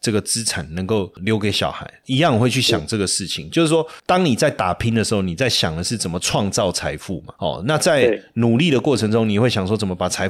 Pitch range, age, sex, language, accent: 95-120 Hz, 30-49, male, Chinese, native